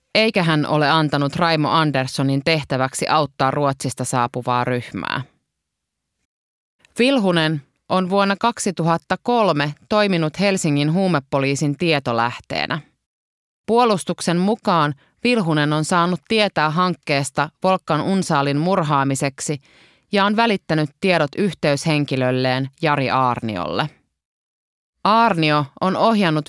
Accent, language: native, Finnish